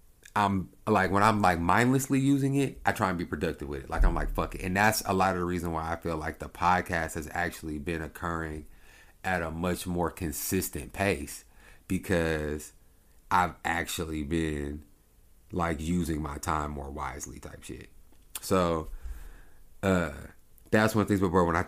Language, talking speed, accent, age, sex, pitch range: English, 180 wpm, American, 30-49, male, 80-105 Hz